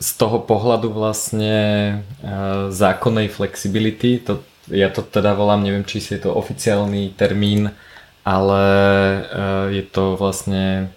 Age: 20-39